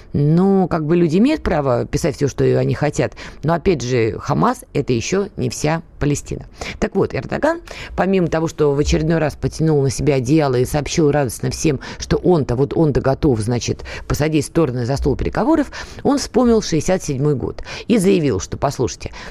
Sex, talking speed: female, 180 wpm